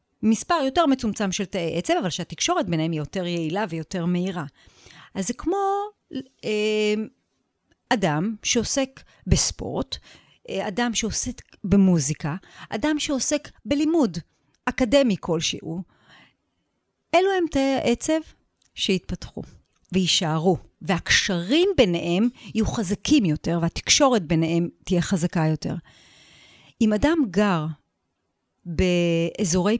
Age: 40-59